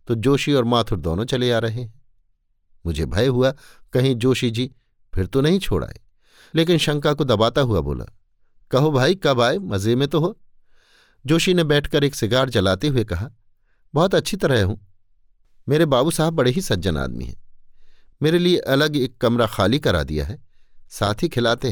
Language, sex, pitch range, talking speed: Hindi, male, 100-145 Hz, 180 wpm